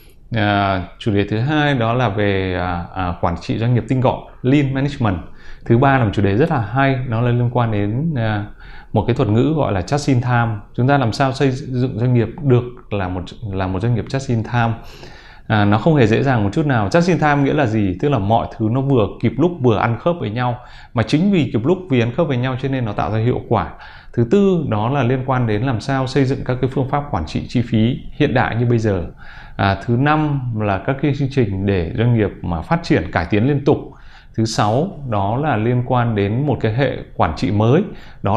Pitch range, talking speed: 105-135 Hz, 250 wpm